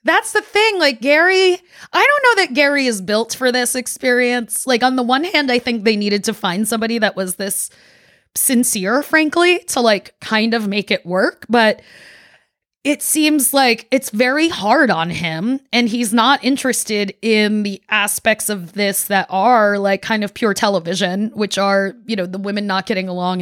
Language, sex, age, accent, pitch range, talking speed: English, female, 20-39, American, 195-245 Hz, 185 wpm